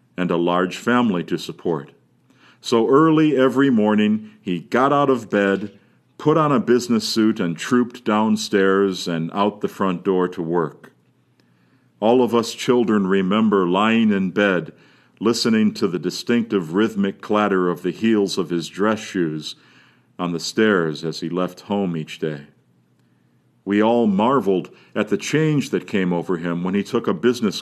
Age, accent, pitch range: 50-69, American, 85-115 Hz